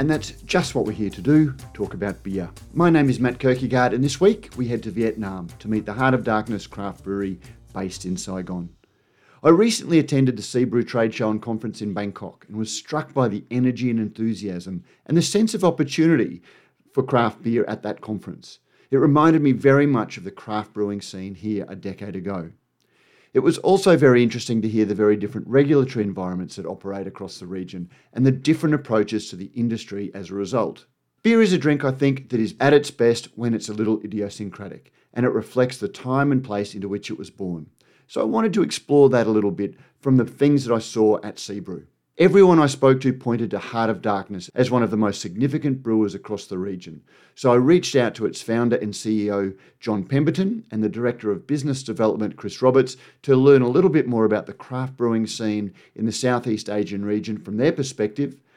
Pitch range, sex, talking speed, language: 100-135 Hz, male, 210 wpm, English